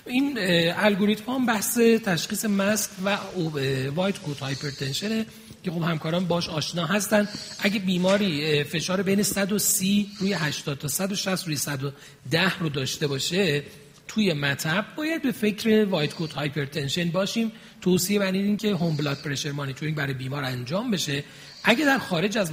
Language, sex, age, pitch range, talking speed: Persian, male, 40-59, 145-205 Hz, 140 wpm